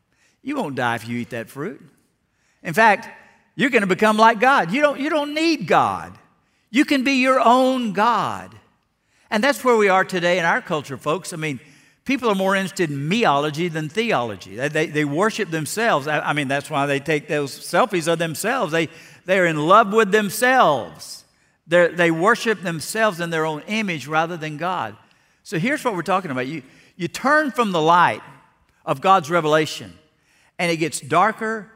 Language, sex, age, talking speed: English, male, 60-79, 185 wpm